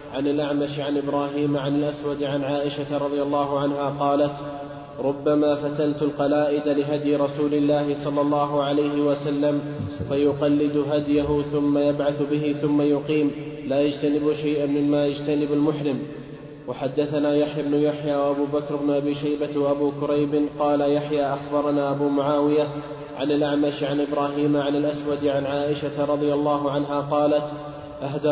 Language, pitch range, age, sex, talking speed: Arabic, 145-150 Hz, 20-39, male, 135 wpm